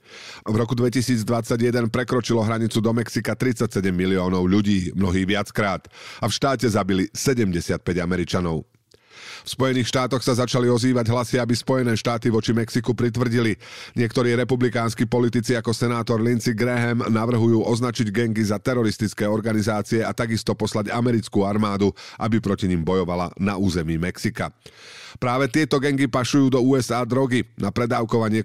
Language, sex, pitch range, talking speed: Slovak, male, 100-125 Hz, 135 wpm